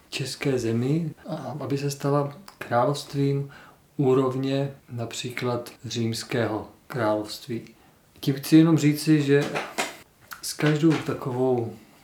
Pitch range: 120-150 Hz